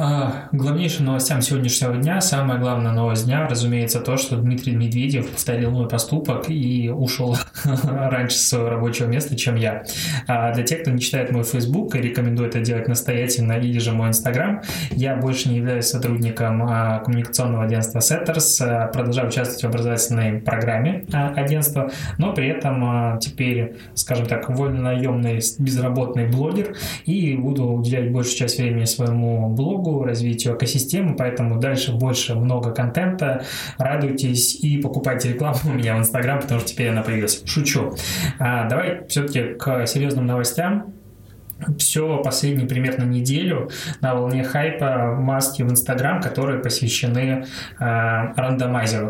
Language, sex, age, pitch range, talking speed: Russian, male, 20-39, 120-140 Hz, 140 wpm